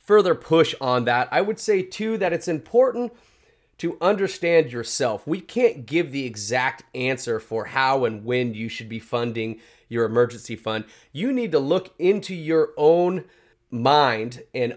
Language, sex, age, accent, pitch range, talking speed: English, male, 30-49, American, 120-160 Hz, 165 wpm